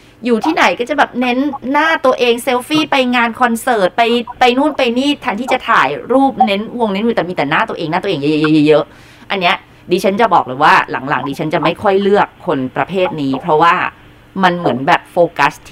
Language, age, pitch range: Thai, 20-39, 160-240 Hz